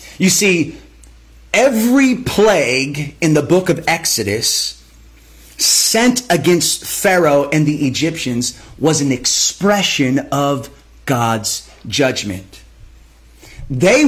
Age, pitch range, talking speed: 30-49, 150-240 Hz, 95 wpm